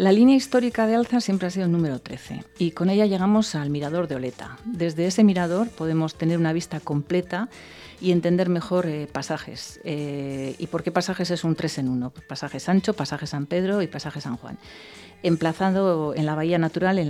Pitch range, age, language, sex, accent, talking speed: 150-180 Hz, 40-59, English, female, Spanish, 205 wpm